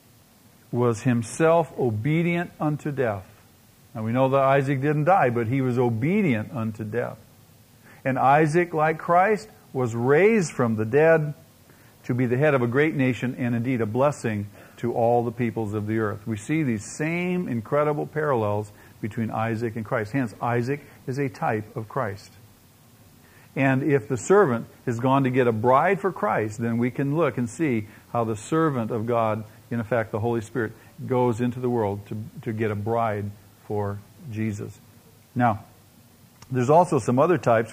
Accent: American